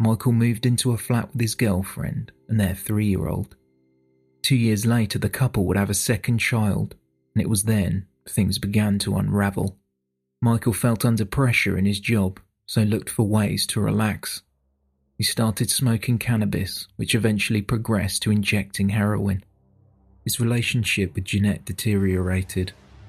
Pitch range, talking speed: 95-110 Hz, 150 wpm